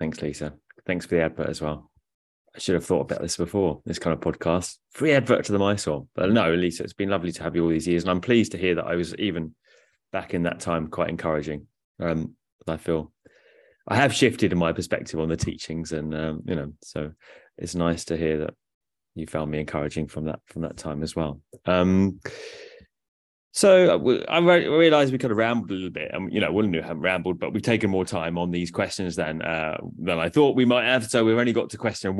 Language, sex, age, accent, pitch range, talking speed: English, male, 20-39, British, 85-115 Hz, 235 wpm